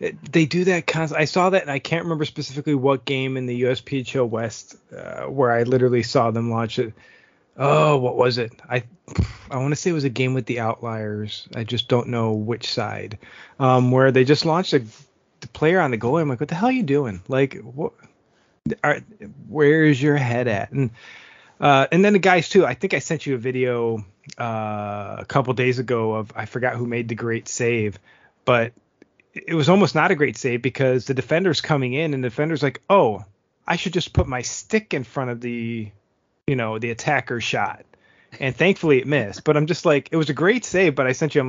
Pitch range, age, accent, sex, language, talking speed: 115-150 Hz, 30-49, American, male, English, 220 wpm